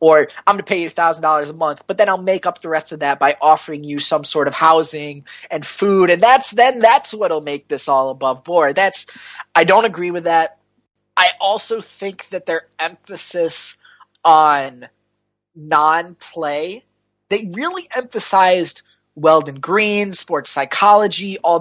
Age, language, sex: 20-39, English, male